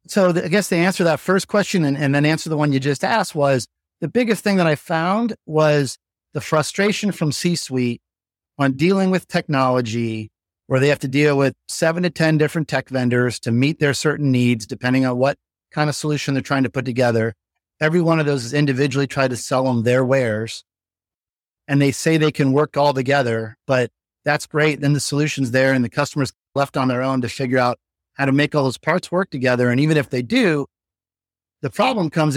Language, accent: English, American